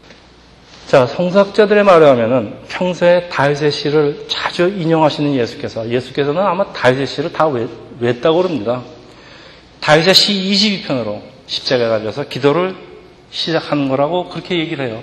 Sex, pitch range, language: male, 135-180 Hz, Korean